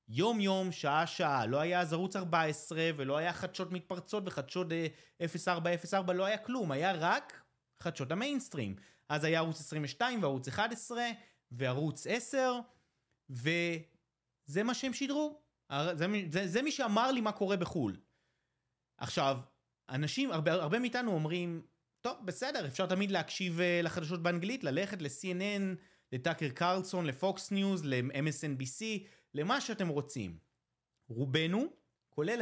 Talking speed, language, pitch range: 130 wpm, Hebrew, 145-200 Hz